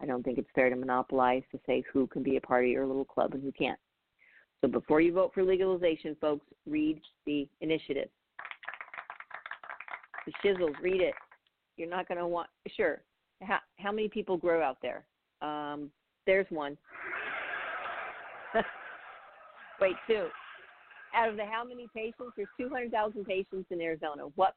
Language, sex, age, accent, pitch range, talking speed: English, female, 50-69, American, 135-190 Hz, 160 wpm